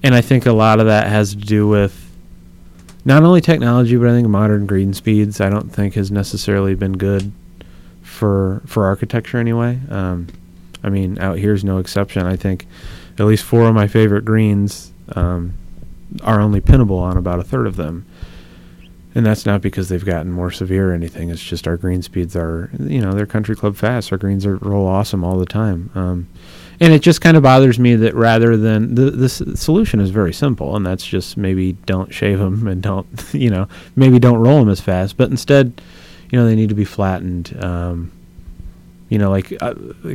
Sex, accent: male, American